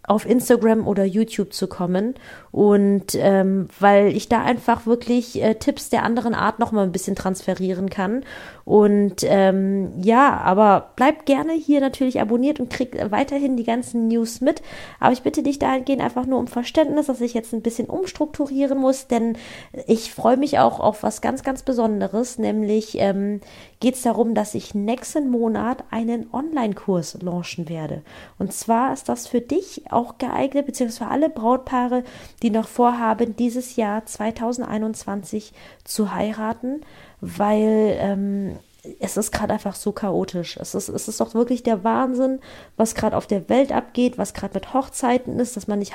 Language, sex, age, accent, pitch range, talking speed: German, female, 20-39, German, 205-245 Hz, 165 wpm